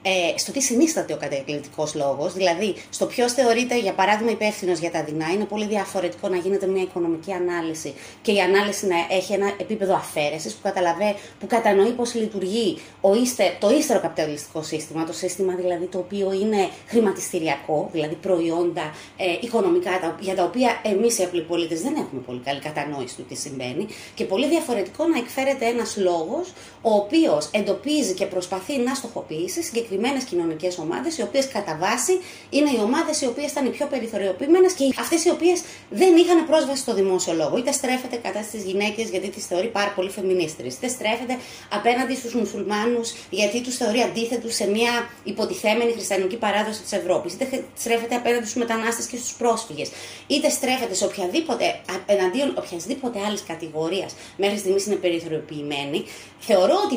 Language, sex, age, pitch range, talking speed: Greek, female, 30-49, 180-240 Hz, 160 wpm